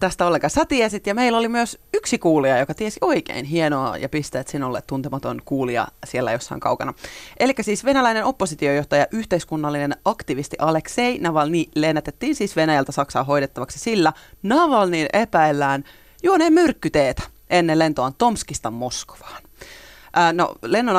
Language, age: Finnish, 30-49